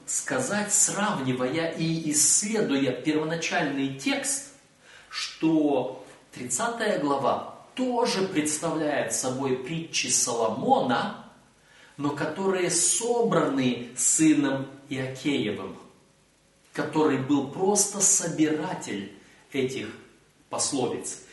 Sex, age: male, 30-49